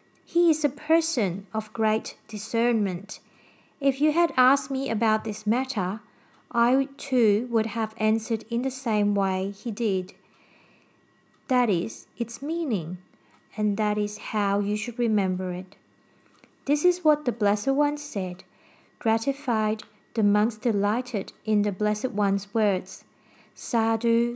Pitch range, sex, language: 205-245 Hz, female, English